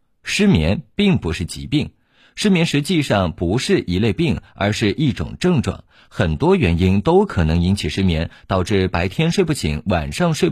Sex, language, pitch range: male, Chinese, 95-155 Hz